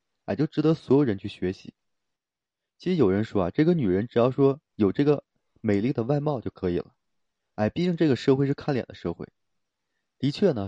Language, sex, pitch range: Chinese, male, 100-140 Hz